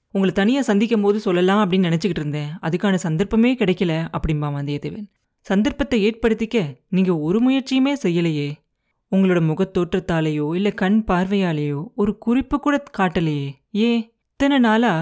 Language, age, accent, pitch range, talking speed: Tamil, 30-49, native, 165-230 Hz, 110 wpm